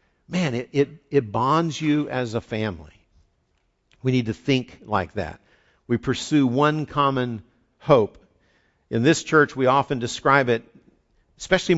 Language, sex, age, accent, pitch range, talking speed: English, male, 50-69, American, 120-150 Hz, 145 wpm